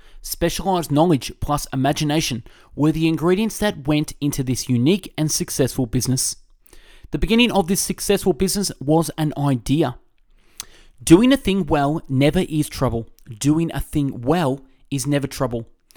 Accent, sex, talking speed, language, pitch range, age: Australian, male, 145 wpm, English, 135-185 Hz, 20-39